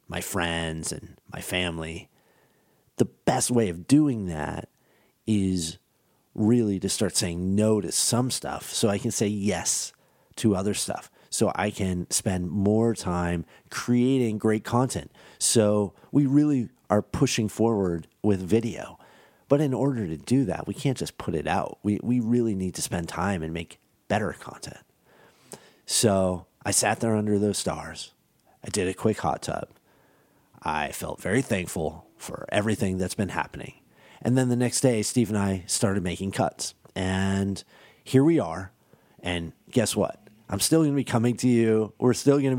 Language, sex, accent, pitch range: English, male, American, 90-120 Hz